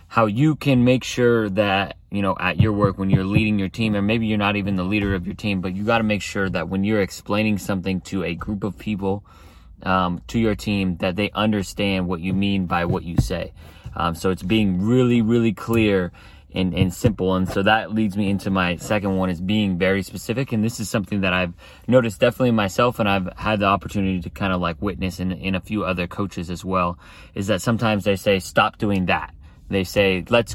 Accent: American